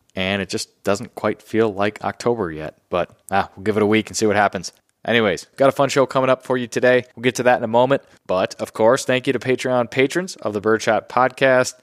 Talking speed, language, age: 250 wpm, English, 20-39